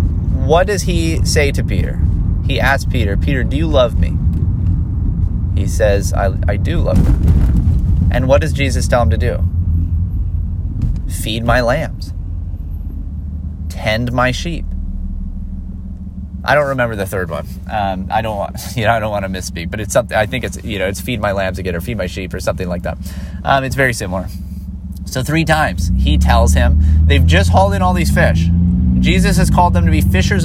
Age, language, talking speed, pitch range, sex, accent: 30-49, English, 190 wpm, 80-90 Hz, male, American